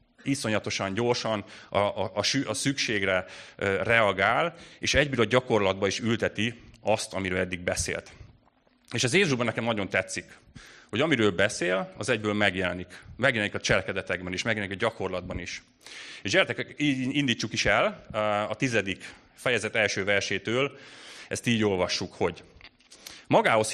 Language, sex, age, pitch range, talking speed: English, male, 30-49, 100-120 Hz, 130 wpm